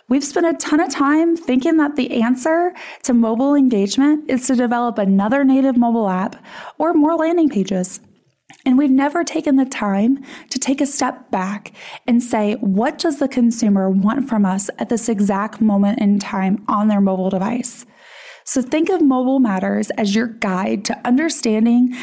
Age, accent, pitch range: 20-39, American, 215-280 Hz